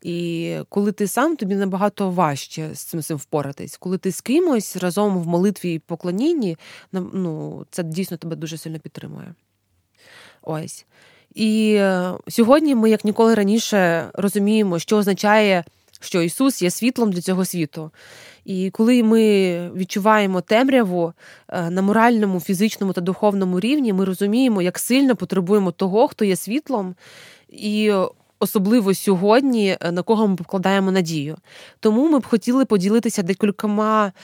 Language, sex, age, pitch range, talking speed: Ukrainian, female, 20-39, 180-220 Hz, 135 wpm